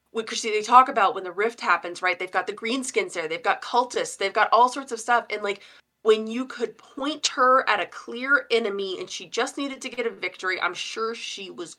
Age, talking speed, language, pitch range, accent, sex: 20-39, 240 wpm, English, 175-235 Hz, American, female